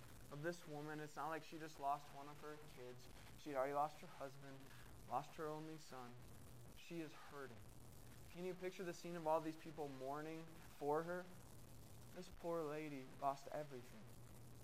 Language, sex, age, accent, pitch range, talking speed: English, male, 20-39, American, 120-150 Hz, 170 wpm